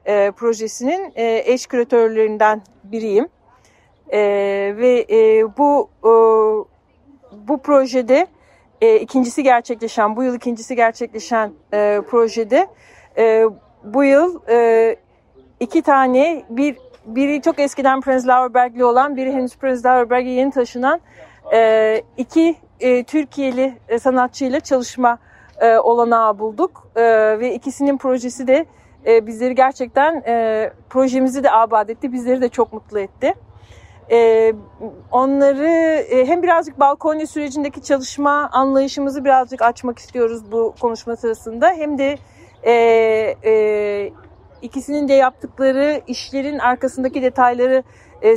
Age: 40-59